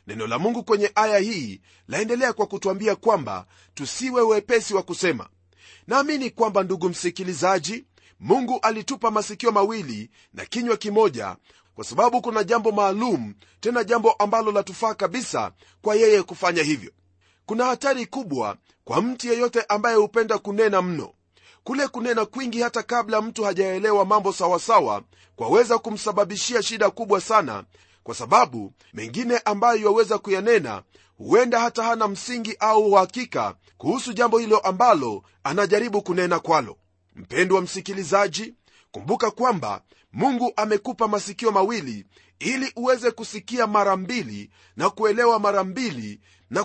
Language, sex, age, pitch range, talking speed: Swahili, male, 40-59, 190-235 Hz, 130 wpm